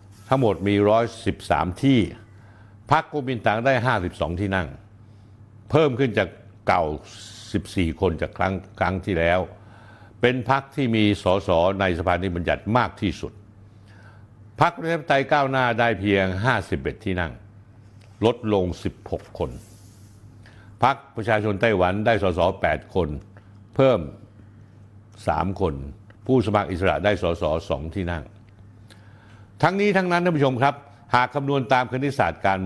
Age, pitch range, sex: 60-79, 95-115 Hz, male